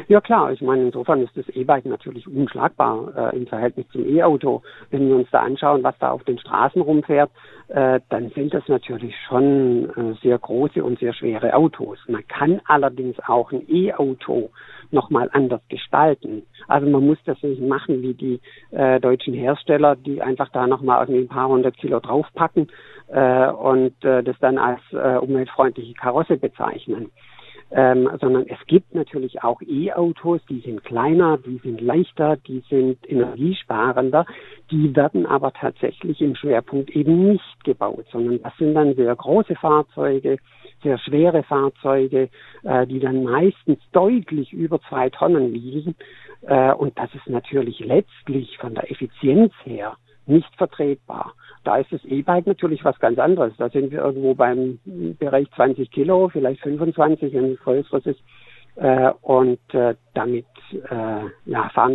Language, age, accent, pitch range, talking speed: German, 50-69, German, 125-150 Hz, 155 wpm